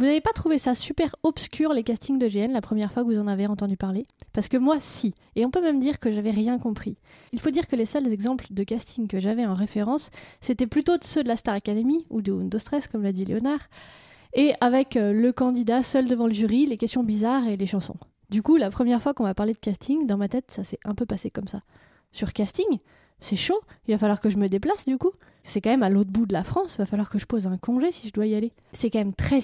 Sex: female